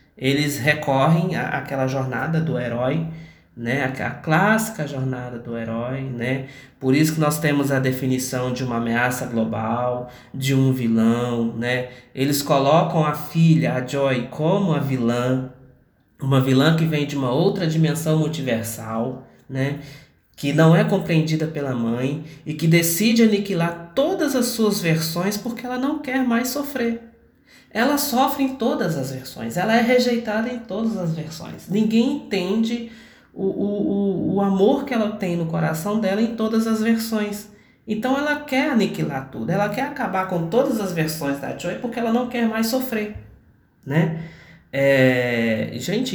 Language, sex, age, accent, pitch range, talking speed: Portuguese, male, 20-39, Brazilian, 130-215 Hz, 150 wpm